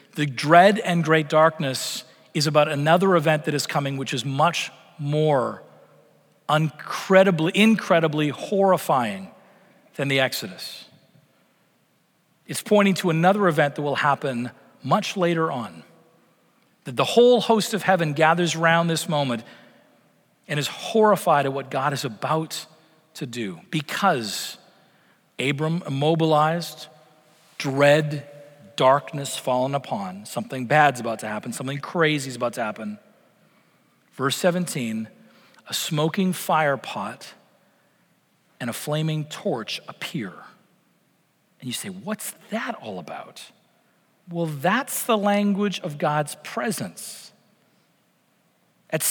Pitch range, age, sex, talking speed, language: 150-200 Hz, 40-59, male, 115 wpm, English